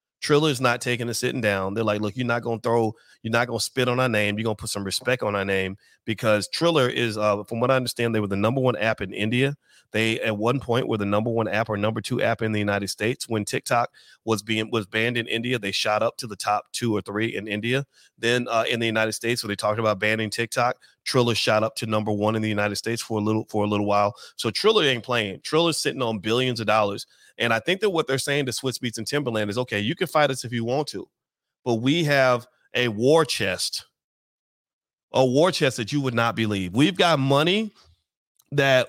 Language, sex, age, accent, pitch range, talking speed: English, male, 30-49, American, 110-135 Hz, 250 wpm